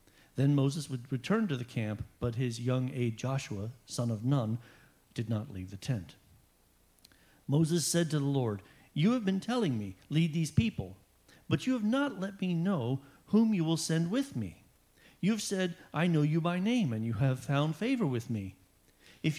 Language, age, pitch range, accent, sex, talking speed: English, 50-69, 115-175 Hz, American, male, 190 wpm